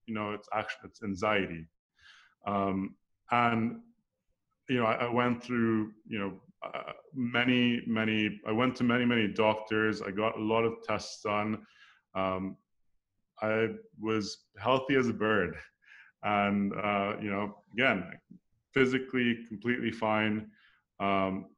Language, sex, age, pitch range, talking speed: English, male, 30-49, 100-115 Hz, 135 wpm